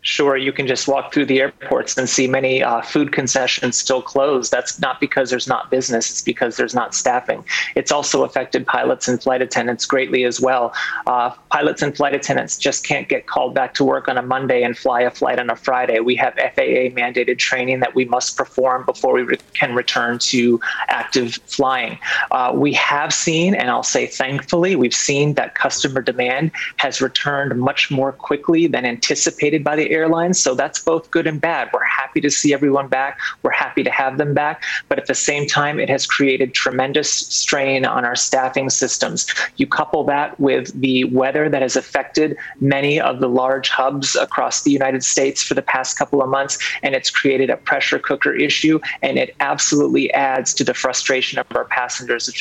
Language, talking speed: English, 195 wpm